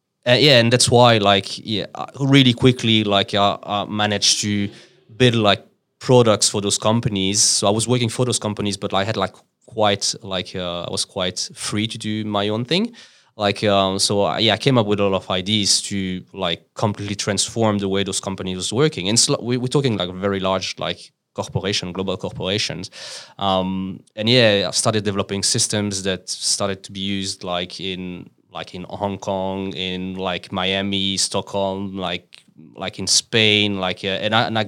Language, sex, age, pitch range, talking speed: English, male, 20-39, 95-110 Hz, 190 wpm